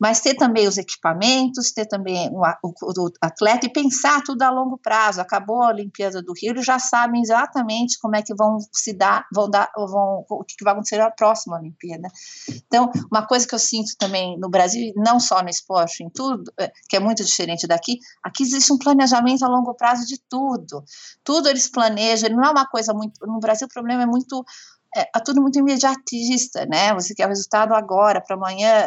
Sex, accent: female, Brazilian